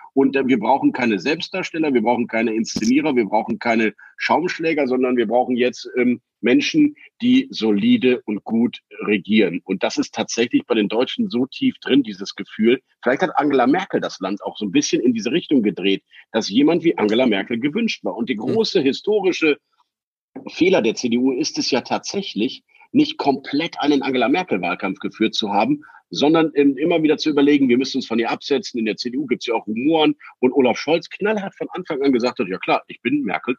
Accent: German